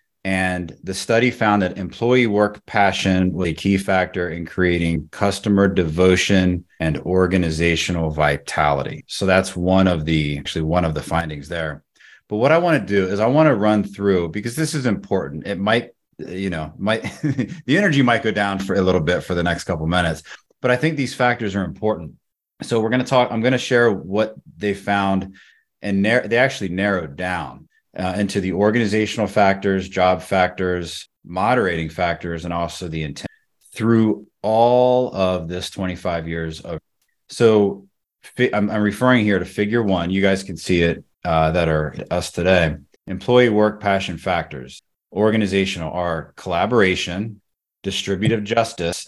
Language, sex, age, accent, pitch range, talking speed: English, male, 30-49, American, 85-105 Hz, 170 wpm